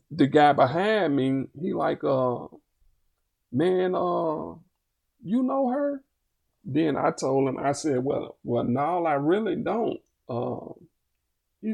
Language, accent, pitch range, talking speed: English, American, 125-180 Hz, 135 wpm